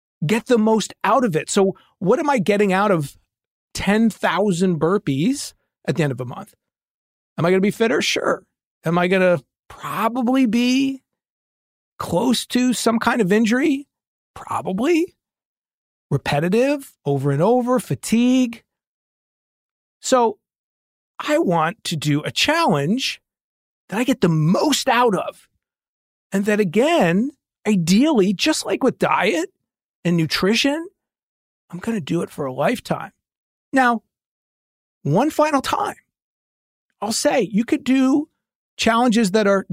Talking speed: 135 wpm